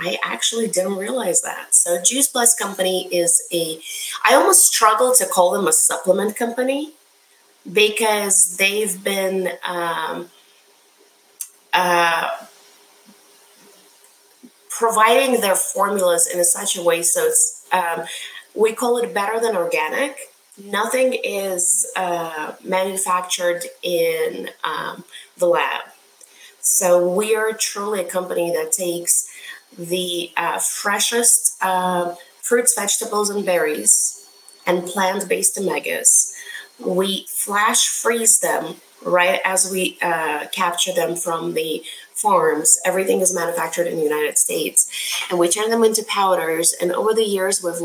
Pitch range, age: 180-255 Hz, 30-49